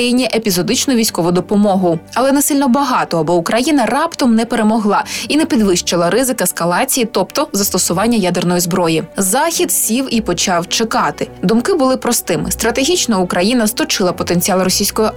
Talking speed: 135 wpm